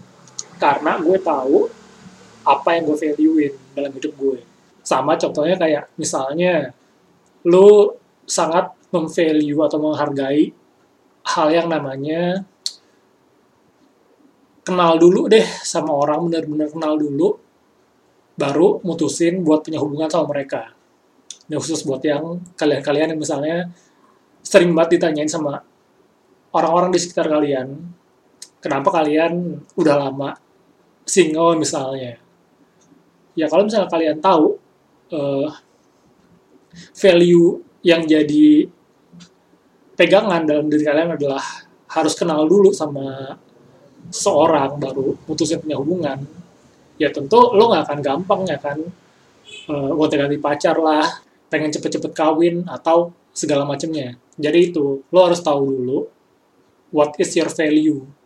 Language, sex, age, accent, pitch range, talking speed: Indonesian, male, 20-39, native, 145-175 Hz, 110 wpm